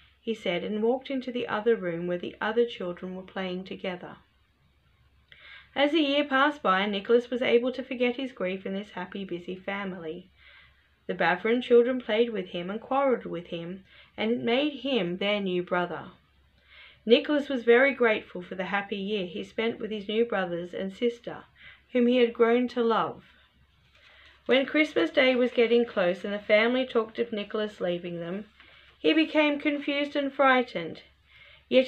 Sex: female